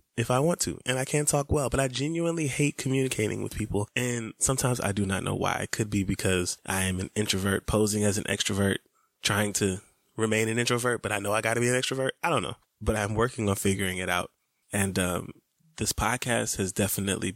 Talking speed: 225 wpm